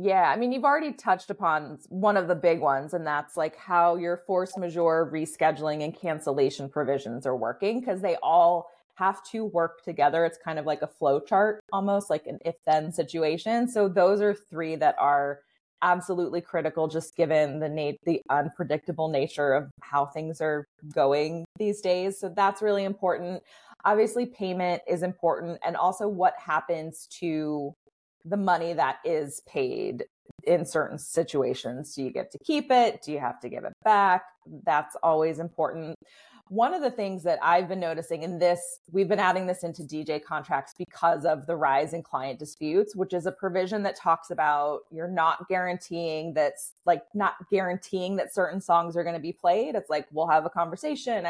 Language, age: English, 20-39